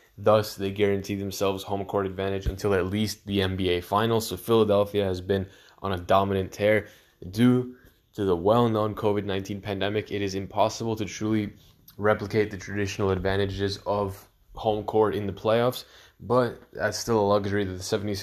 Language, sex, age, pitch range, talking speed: English, male, 10-29, 100-115 Hz, 160 wpm